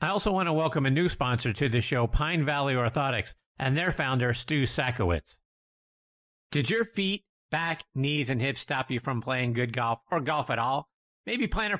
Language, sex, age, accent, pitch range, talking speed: English, male, 50-69, American, 125-175 Hz, 195 wpm